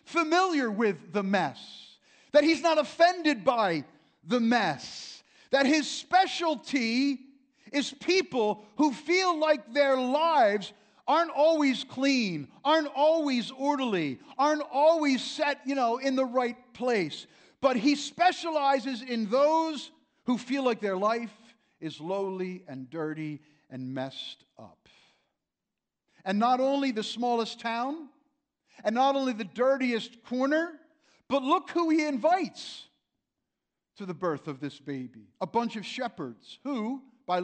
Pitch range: 220-290 Hz